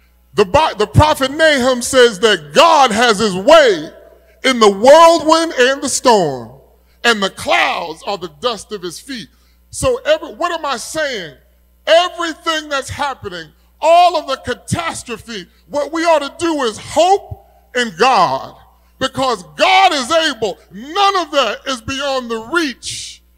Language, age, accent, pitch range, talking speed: English, 30-49, American, 195-310 Hz, 150 wpm